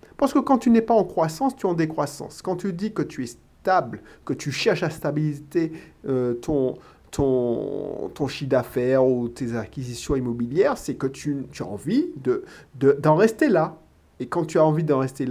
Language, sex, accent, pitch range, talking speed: French, male, French, 140-180 Hz, 190 wpm